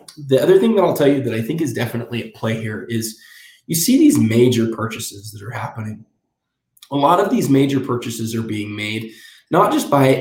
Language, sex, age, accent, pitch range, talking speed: English, male, 20-39, American, 110-130 Hz, 210 wpm